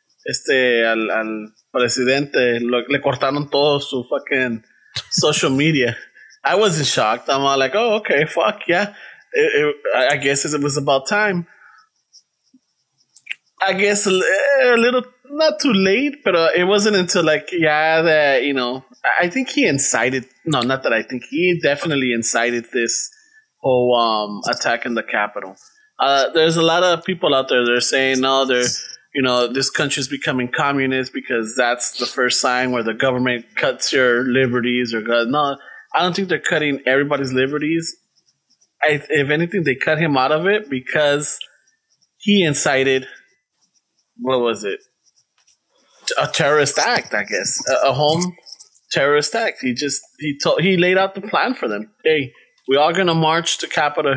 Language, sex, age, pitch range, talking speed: English, male, 20-39, 125-175 Hz, 165 wpm